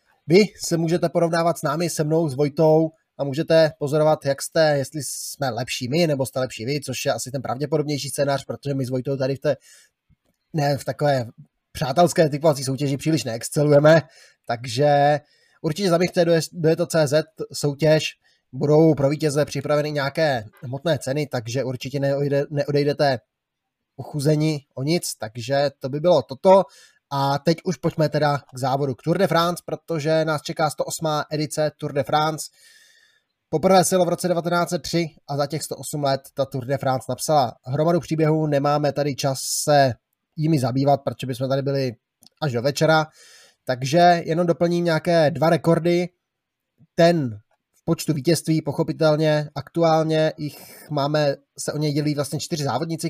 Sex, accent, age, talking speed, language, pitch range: male, native, 20-39, 155 wpm, Czech, 140-165 Hz